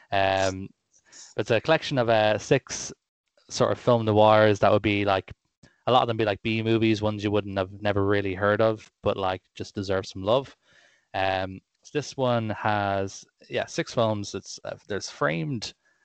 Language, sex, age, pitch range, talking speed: English, male, 20-39, 95-110 Hz, 180 wpm